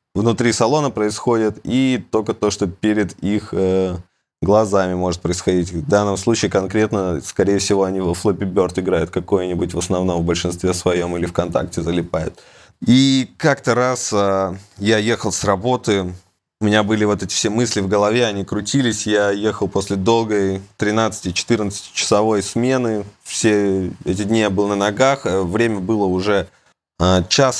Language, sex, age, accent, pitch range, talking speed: Russian, male, 20-39, native, 95-115 Hz, 155 wpm